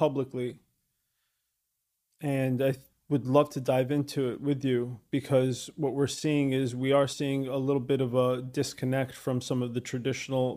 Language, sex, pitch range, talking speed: English, male, 125-140 Hz, 170 wpm